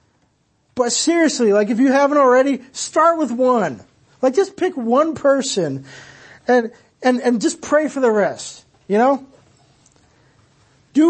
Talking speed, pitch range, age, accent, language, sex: 140 wpm, 160-260 Hz, 40-59, American, English, male